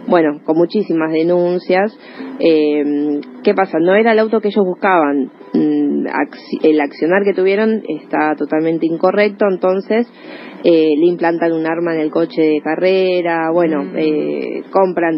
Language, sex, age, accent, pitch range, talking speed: Spanish, female, 20-39, Argentinian, 155-195 Hz, 140 wpm